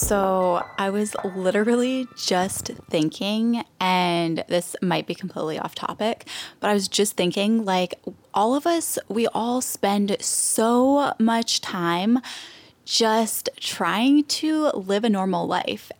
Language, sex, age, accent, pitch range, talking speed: English, female, 10-29, American, 180-230 Hz, 130 wpm